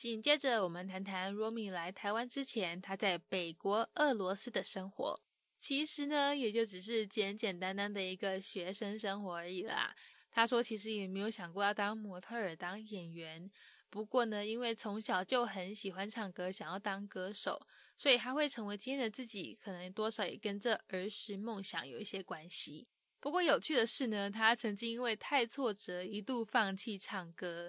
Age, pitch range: 10-29, 190-235 Hz